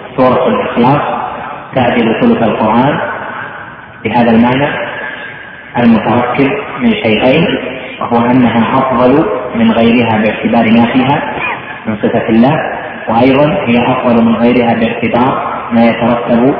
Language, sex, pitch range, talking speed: Arabic, male, 115-130 Hz, 105 wpm